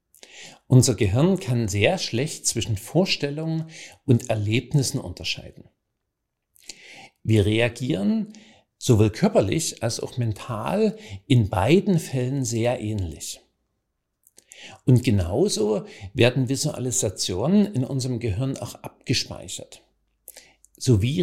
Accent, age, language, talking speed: German, 50-69, German, 90 wpm